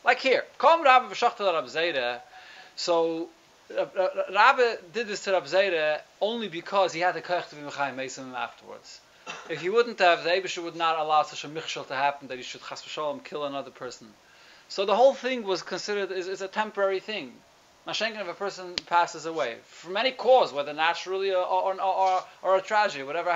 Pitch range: 145-190 Hz